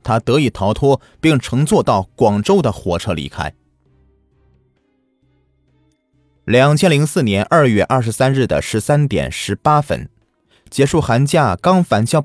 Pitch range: 100-160 Hz